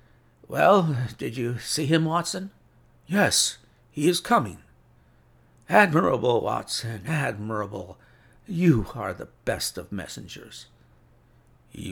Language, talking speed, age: English, 100 wpm, 60-79